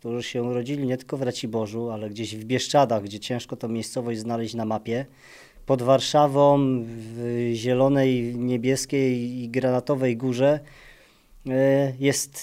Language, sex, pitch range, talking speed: Polish, male, 125-160 Hz, 130 wpm